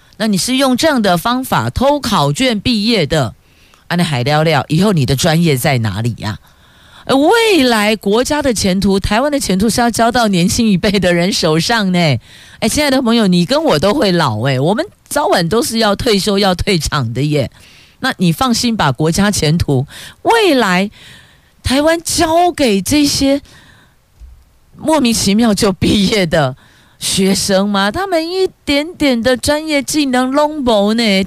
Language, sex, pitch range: Chinese, female, 160-240 Hz